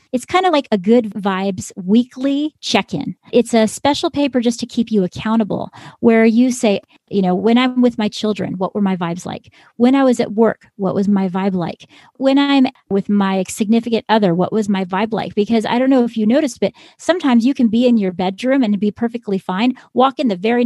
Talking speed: 225 wpm